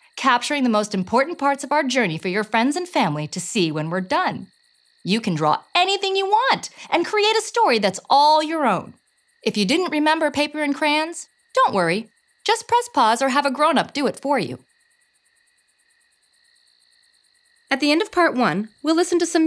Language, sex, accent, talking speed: English, female, American, 190 wpm